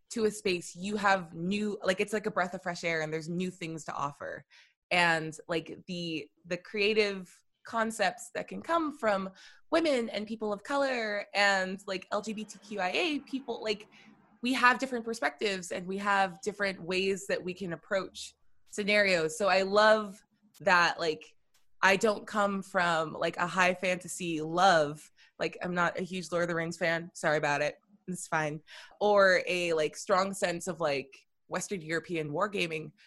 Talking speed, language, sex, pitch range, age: 170 wpm, English, female, 165-210 Hz, 20-39